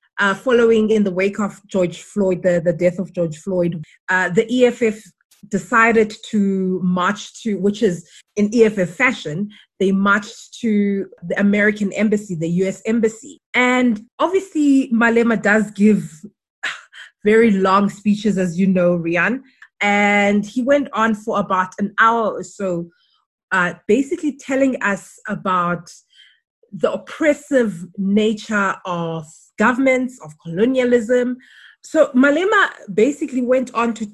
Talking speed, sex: 130 wpm, female